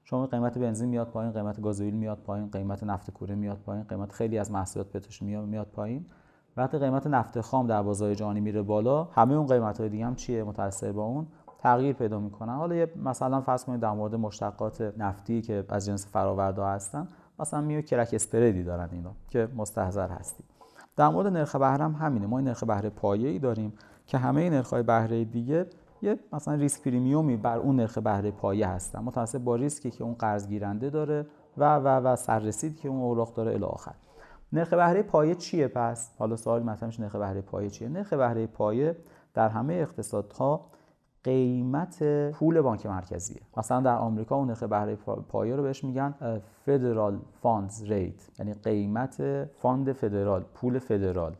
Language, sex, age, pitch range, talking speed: Persian, male, 30-49, 105-140 Hz, 175 wpm